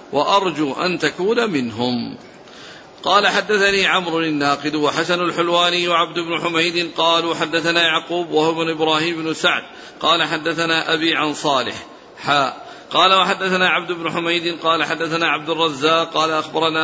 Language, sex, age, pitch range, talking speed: Arabic, male, 50-69, 160-180 Hz, 130 wpm